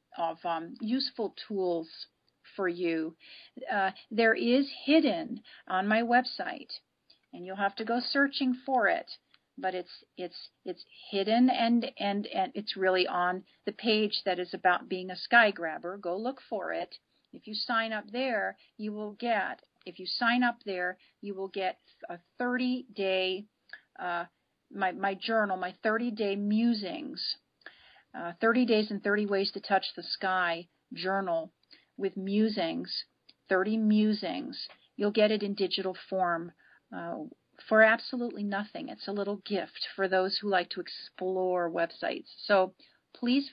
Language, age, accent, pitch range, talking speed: English, 40-59, American, 185-230 Hz, 150 wpm